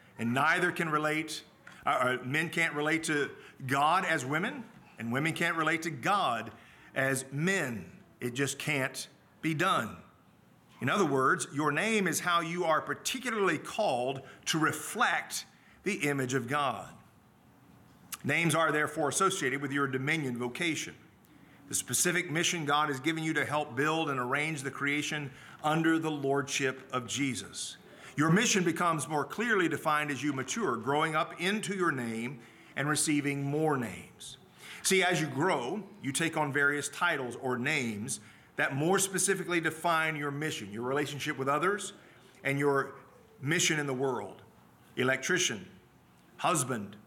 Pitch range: 135-165 Hz